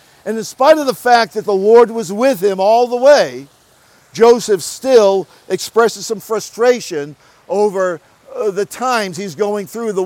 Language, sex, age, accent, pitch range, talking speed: English, male, 50-69, American, 185-230 Hz, 165 wpm